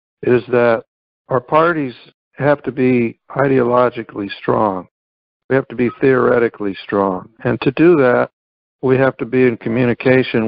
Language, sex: English, male